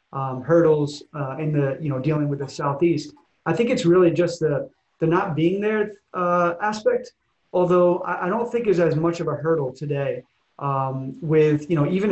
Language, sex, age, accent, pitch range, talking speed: English, male, 30-49, American, 145-170 Hz, 200 wpm